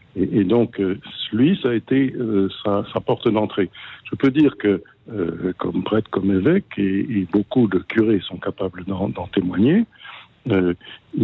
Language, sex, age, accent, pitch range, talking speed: French, male, 60-79, French, 95-130 Hz, 160 wpm